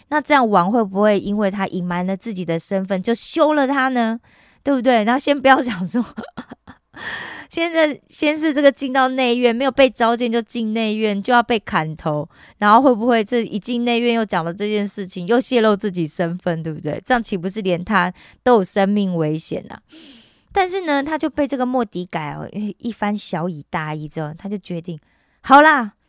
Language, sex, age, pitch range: Korean, female, 20-39, 180-260 Hz